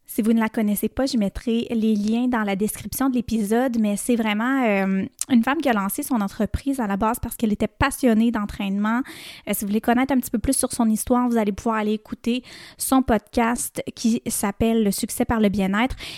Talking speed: 225 wpm